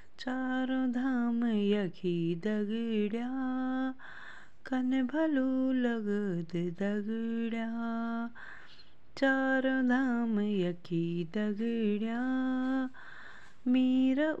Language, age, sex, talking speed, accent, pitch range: Hindi, 20-39, female, 55 wpm, native, 225-265 Hz